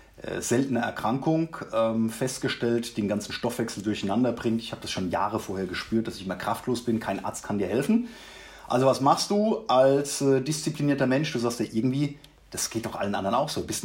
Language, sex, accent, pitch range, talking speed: German, male, German, 105-135 Hz, 210 wpm